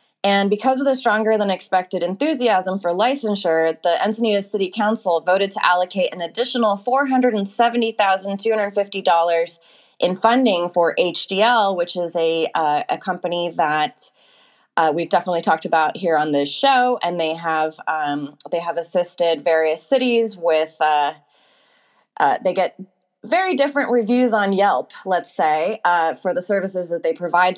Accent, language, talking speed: American, English, 135 wpm